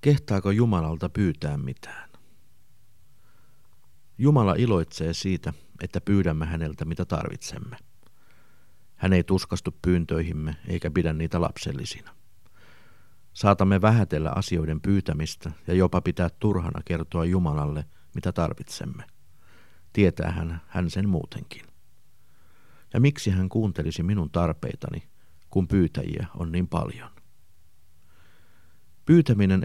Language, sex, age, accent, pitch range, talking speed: Finnish, male, 50-69, native, 80-100 Hz, 100 wpm